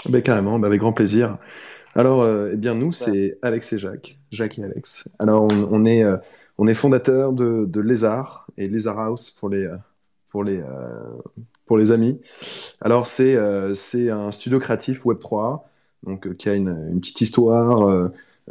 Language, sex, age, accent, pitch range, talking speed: French, male, 20-39, French, 100-120 Hz, 190 wpm